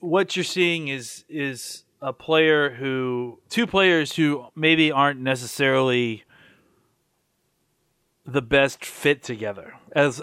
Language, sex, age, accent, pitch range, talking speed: English, male, 30-49, American, 125-160 Hz, 110 wpm